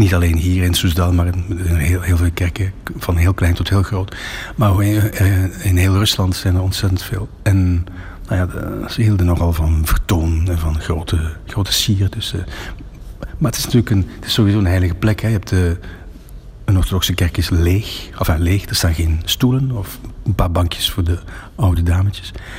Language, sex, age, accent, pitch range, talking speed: Dutch, male, 60-79, Dutch, 85-100 Hz, 195 wpm